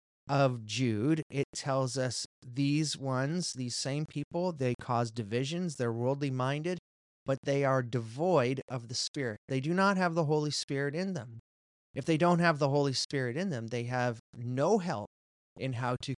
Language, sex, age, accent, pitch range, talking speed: English, male, 30-49, American, 115-145 Hz, 180 wpm